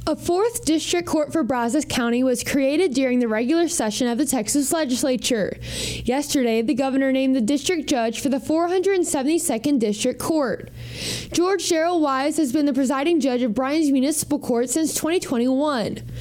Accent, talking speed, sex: American, 160 wpm, female